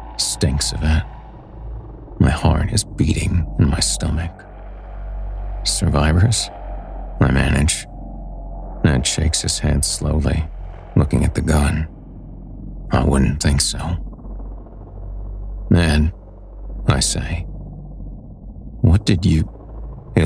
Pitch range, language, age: 70-95 Hz, English, 50-69